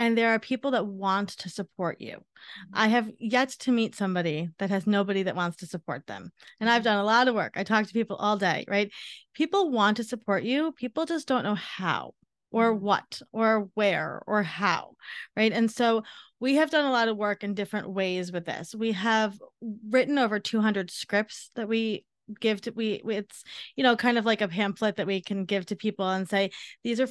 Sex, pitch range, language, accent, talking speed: female, 200-250 Hz, English, American, 215 wpm